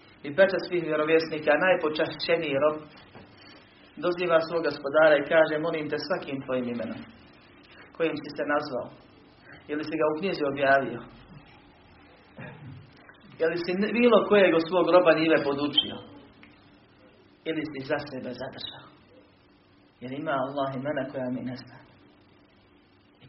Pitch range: 130-155 Hz